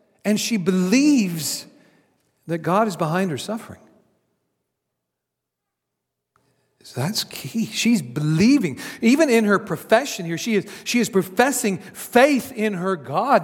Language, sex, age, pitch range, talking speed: English, male, 50-69, 115-195 Hz, 125 wpm